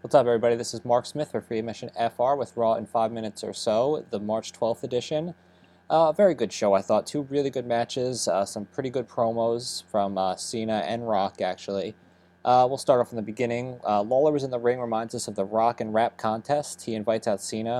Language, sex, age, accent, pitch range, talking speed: English, male, 20-39, American, 100-120 Hz, 235 wpm